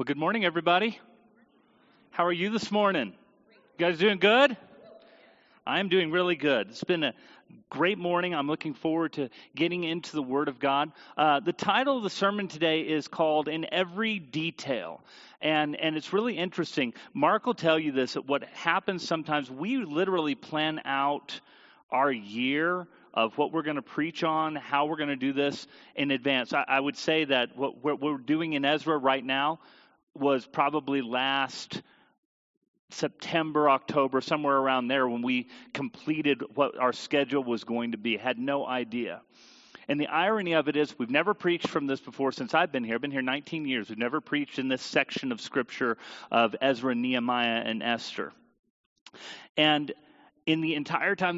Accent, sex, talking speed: American, male, 180 wpm